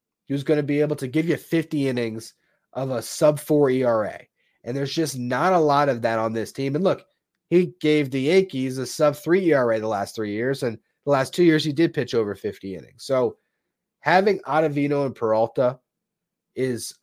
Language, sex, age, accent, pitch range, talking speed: English, male, 30-49, American, 120-155 Hz, 195 wpm